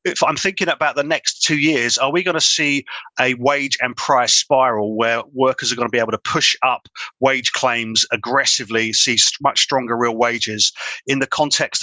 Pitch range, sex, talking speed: 120-140 Hz, male, 200 wpm